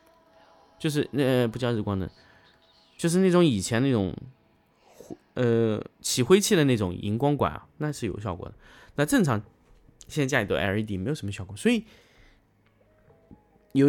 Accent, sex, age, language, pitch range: native, male, 20-39, Chinese, 100-145 Hz